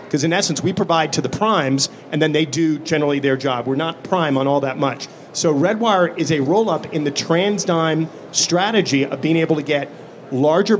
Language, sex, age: English, male, 40-59